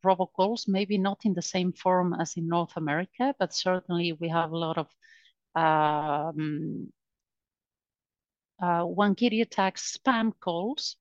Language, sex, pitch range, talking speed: English, female, 175-220 Hz, 130 wpm